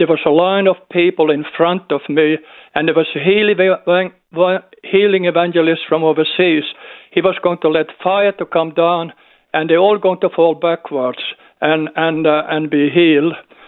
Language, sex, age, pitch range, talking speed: English, male, 50-69, 160-195 Hz, 175 wpm